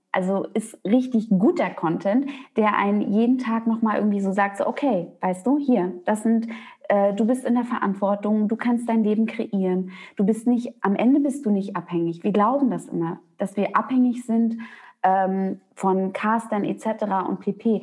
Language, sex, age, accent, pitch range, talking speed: German, female, 20-39, German, 200-250 Hz, 185 wpm